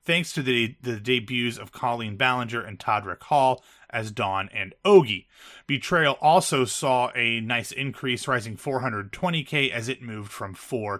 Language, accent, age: English, American, 30-49